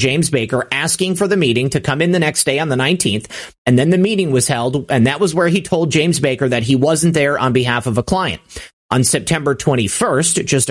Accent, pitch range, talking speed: American, 130-175 Hz, 235 wpm